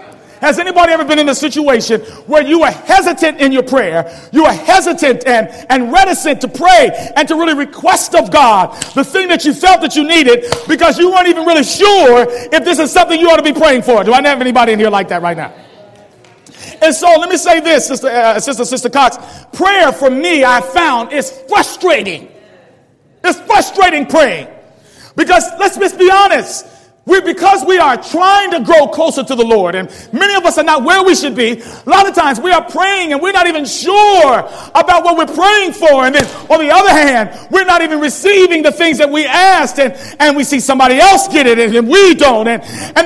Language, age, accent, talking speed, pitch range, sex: English, 40-59, American, 215 wpm, 275-355 Hz, male